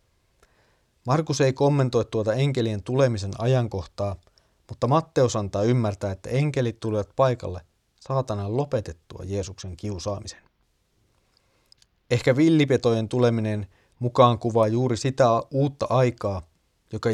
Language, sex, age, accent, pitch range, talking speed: Finnish, male, 30-49, native, 95-120 Hz, 100 wpm